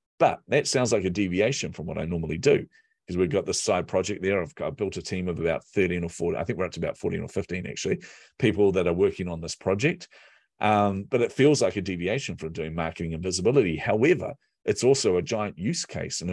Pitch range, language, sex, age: 85-105 Hz, English, male, 40-59